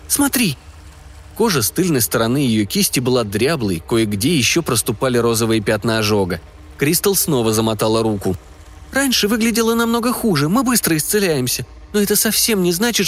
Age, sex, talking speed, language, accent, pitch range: 20-39, male, 140 wpm, Russian, native, 105-155 Hz